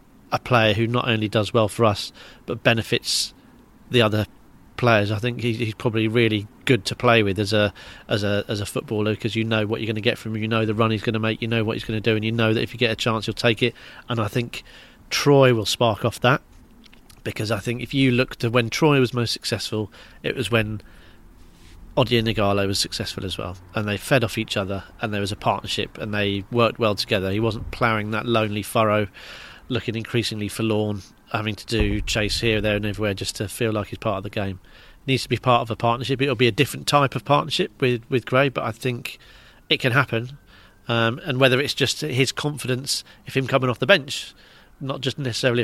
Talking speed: 235 wpm